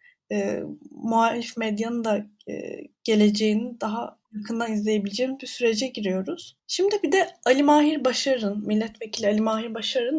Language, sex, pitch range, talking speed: Turkish, female, 215-280 Hz, 130 wpm